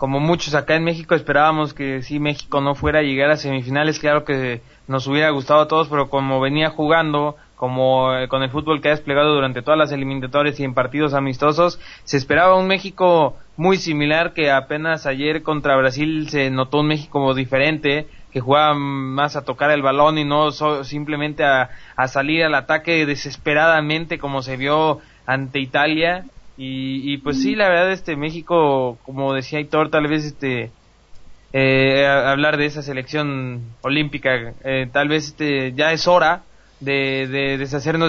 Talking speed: 170 wpm